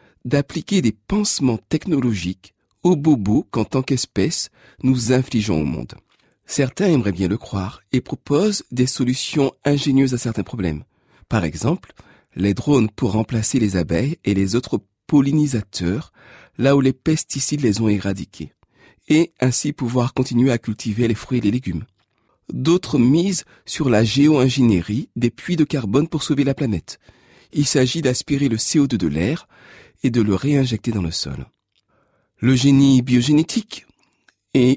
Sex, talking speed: male, 150 wpm